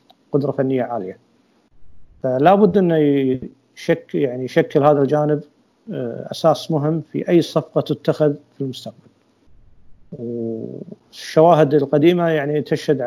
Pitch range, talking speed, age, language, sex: 130-160 Hz, 105 wpm, 50-69, Arabic, male